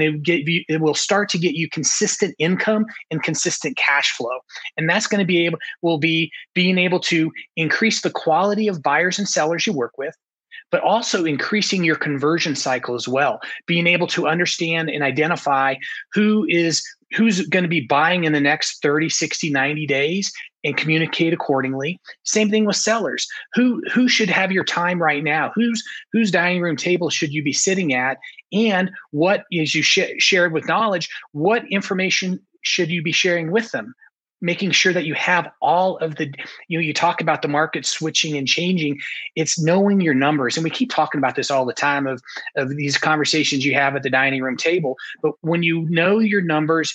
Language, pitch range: English, 150-190 Hz